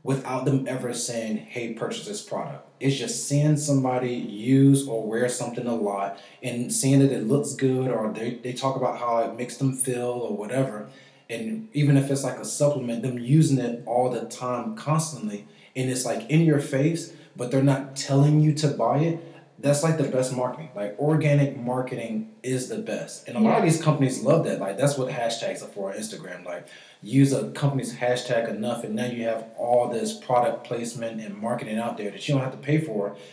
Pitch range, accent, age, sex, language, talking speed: 115-140 Hz, American, 20-39, male, English, 210 wpm